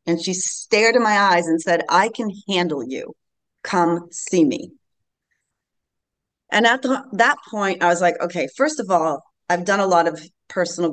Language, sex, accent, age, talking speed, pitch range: English, female, American, 30-49, 175 wpm, 170-225 Hz